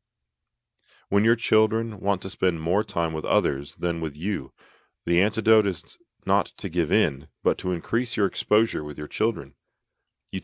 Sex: male